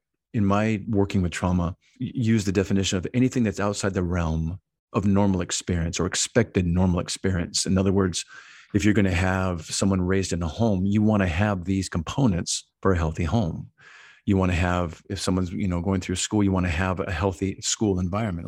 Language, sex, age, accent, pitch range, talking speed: English, male, 50-69, American, 90-110 Hz, 205 wpm